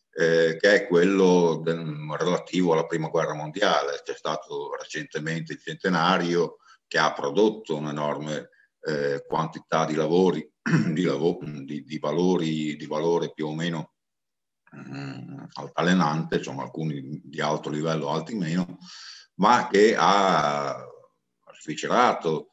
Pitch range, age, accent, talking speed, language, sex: 75-90 Hz, 50-69, native, 105 wpm, Italian, male